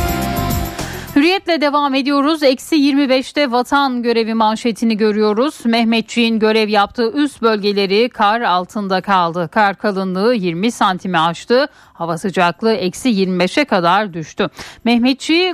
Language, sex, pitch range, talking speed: Turkish, female, 195-270 Hz, 110 wpm